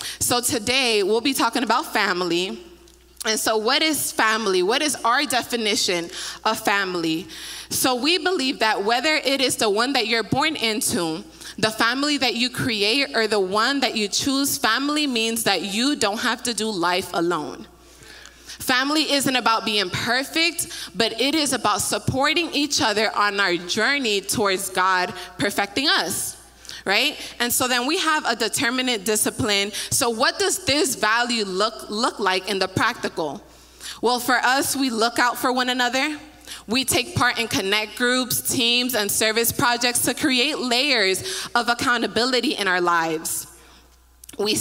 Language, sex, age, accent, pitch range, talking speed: English, female, 20-39, American, 205-270 Hz, 160 wpm